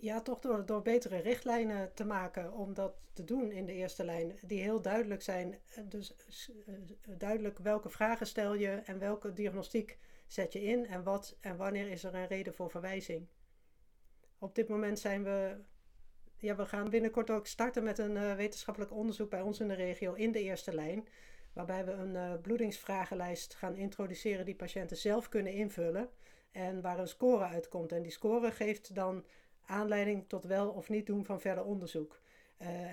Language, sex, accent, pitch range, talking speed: Dutch, female, Dutch, 185-215 Hz, 175 wpm